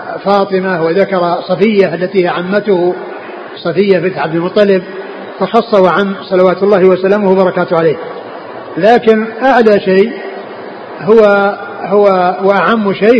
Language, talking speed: Arabic, 105 wpm